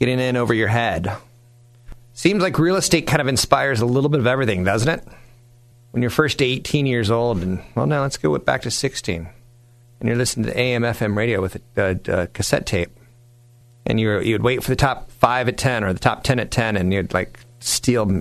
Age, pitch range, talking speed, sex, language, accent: 40-59, 95-125 Hz, 220 wpm, male, English, American